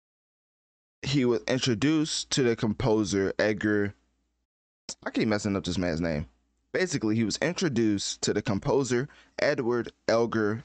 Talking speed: 130 wpm